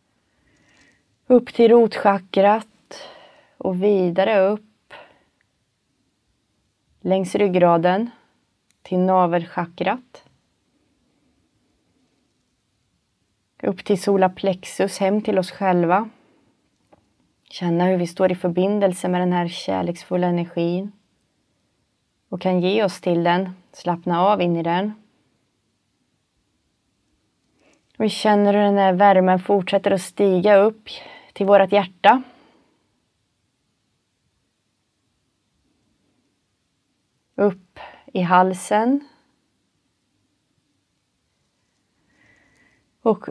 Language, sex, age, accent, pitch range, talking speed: Swedish, female, 30-49, native, 180-205 Hz, 80 wpm